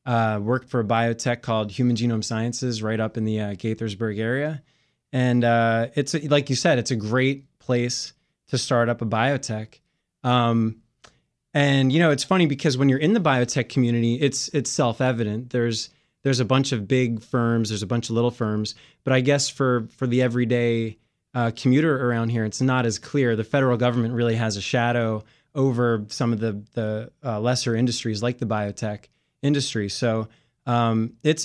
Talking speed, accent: 185 wpm, American